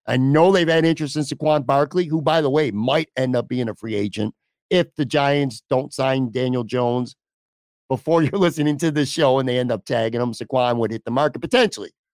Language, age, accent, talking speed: English, 50-69, American, 215 wpm